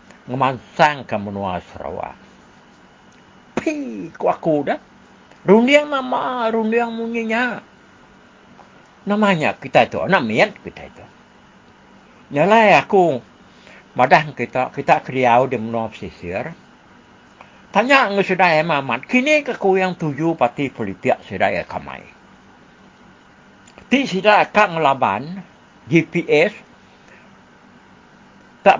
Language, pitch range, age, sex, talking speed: English, 140-220 Hz, 60-79, male, 95 wpm